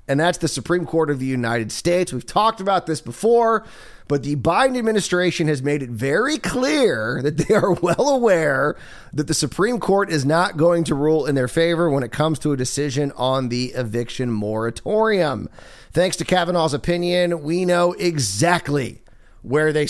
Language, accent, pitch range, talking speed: English, American, 130-175 Hz, 180 wpm